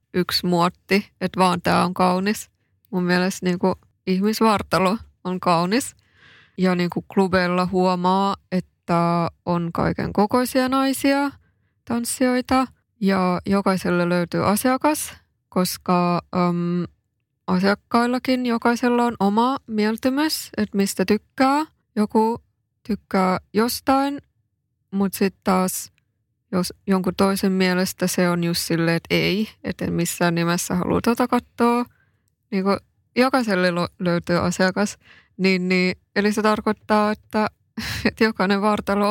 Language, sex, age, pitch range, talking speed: Finnish, female, 20-39, 180-220 Hz, 105 wpm